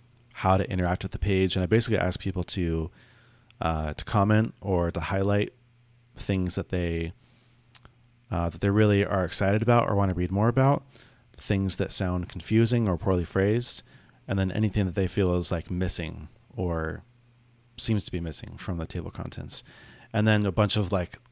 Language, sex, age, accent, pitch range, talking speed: English, male, 30-49, American, 90-120 Hz, 185 wpm